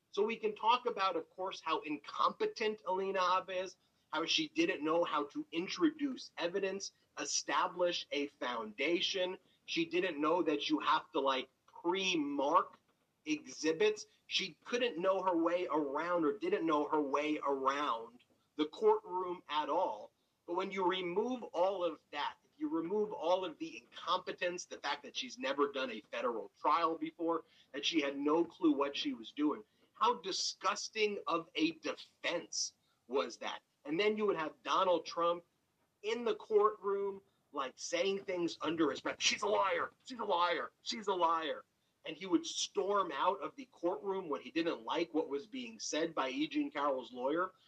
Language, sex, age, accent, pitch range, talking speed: English, male, 30-49, American, 170-265 Hz, 170 wpm